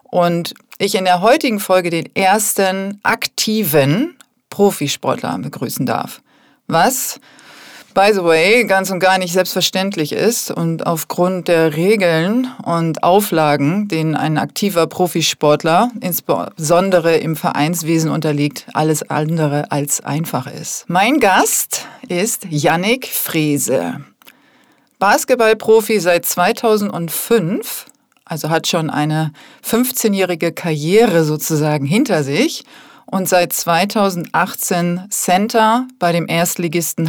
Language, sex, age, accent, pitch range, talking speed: German, female, 40-59, German, 160-210 Hz, 105 wpm